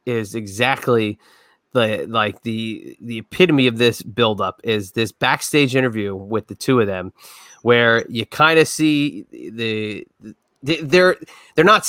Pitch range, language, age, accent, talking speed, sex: 120-160 Hz, English, 30-49, American, 155 wpm, male